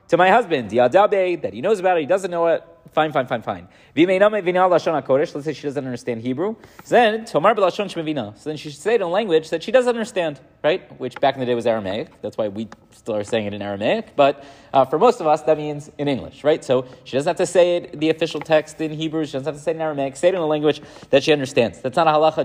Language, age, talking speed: English, 30-49, 265 wpm